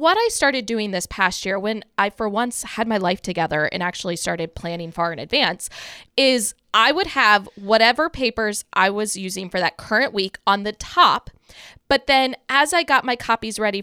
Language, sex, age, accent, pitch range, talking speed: English, female, 20-39, American, 195-255 Hz, 200 wpm